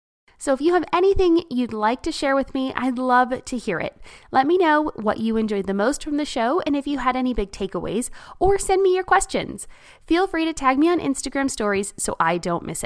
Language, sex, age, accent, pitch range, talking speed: English, female, 20-39, American, 205-285 Hz, 240 wpm